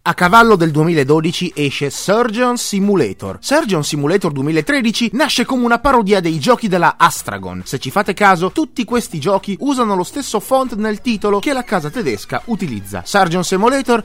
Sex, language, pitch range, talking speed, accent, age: male, Italian, 145-235 Hz, 160 wpm, native, 30-49